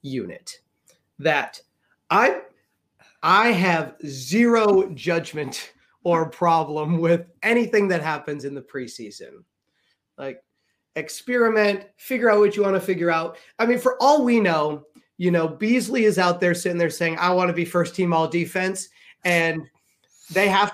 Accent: American